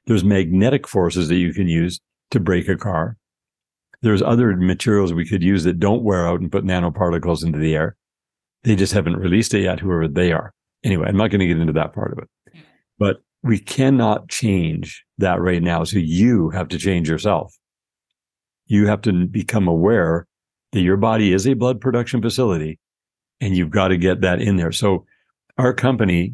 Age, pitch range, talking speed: 60-79, 90-110 Hz, 190 wpm